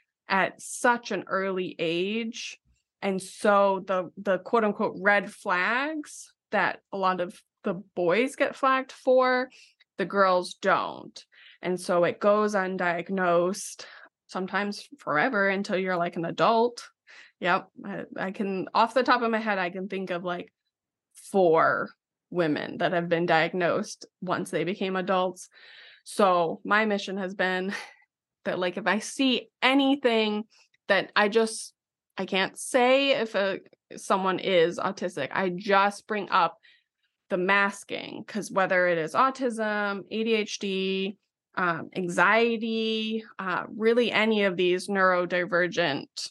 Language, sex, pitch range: English, female, 185-225 Hz